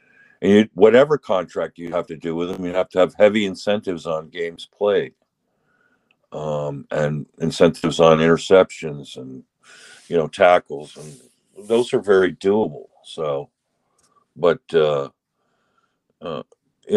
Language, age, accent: English, 50-69, American